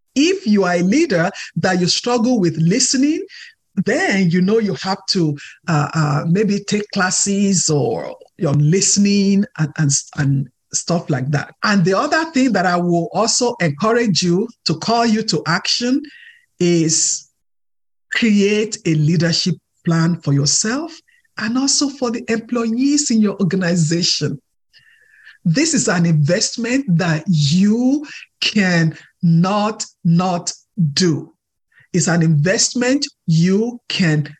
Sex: male